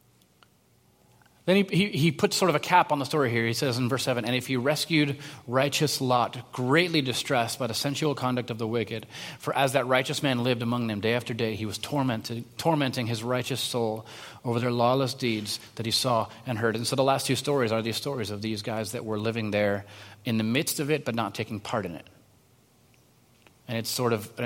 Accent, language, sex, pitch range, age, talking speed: American, English, male, 110-135 Hz, 30-49, 225 wpm